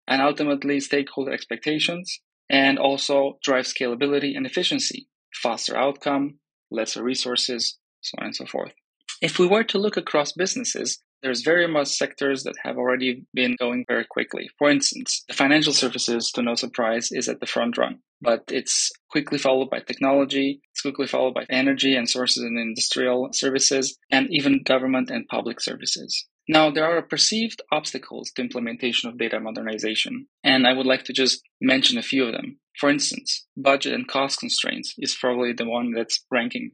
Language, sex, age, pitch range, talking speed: English, male, 20-39, 125-155 Hz, 170 wpm